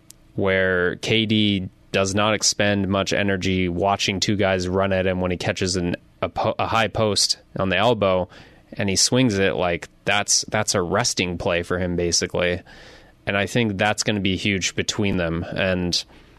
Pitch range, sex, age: 95-110 Hz, male, 20-39